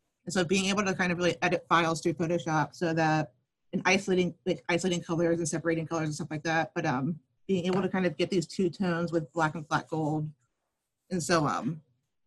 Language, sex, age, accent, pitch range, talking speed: English, female, 30-49, American, 160-180 Hz, 220 wpm